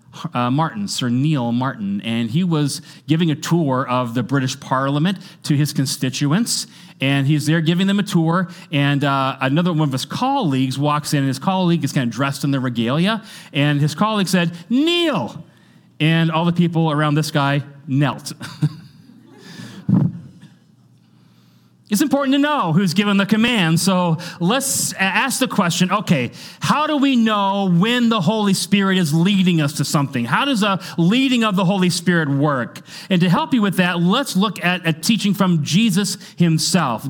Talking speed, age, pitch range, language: 170 wpm, 30-49, 140-190 Hz, English